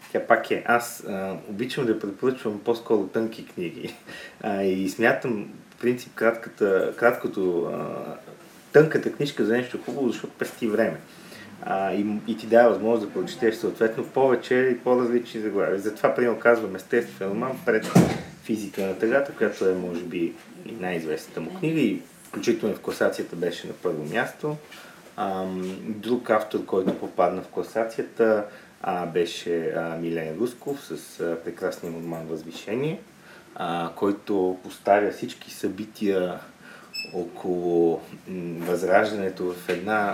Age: 30-49